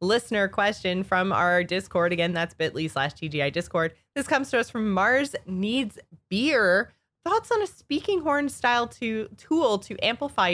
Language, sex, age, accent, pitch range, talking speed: English, female, 20-39, American, 165-240 Hz, 165 wpm